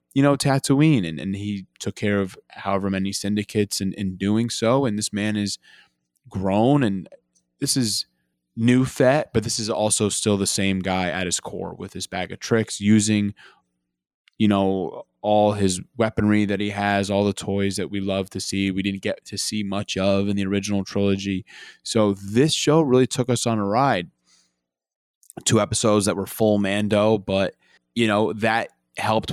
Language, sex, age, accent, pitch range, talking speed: English, male, 20-39, American, 95-105 Hz, 185 wpm